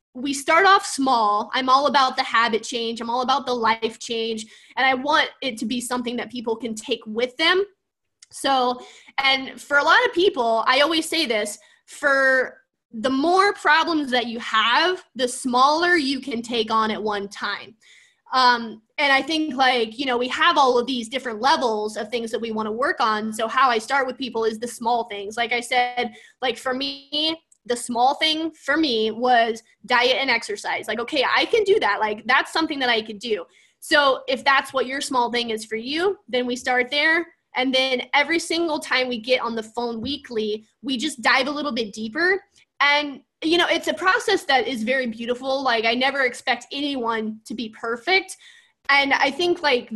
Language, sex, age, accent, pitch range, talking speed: English, female, 20-39, American, 235-300 Hz, 205 wpm